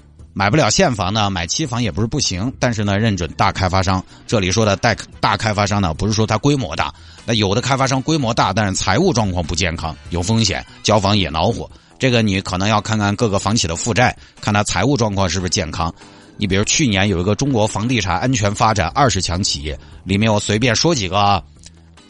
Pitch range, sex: 95-125 Hz, male